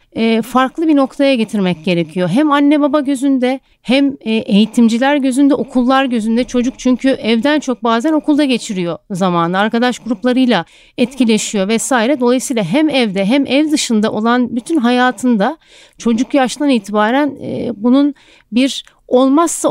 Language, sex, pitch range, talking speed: Turkish, female, 225-280 Hz, 125 wpm